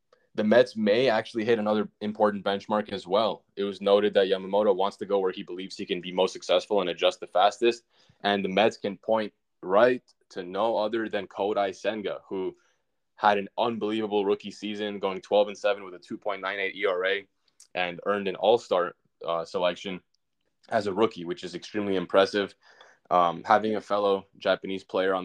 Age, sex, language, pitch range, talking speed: 10-29, male, English, 100-115 Hz, 175 wpm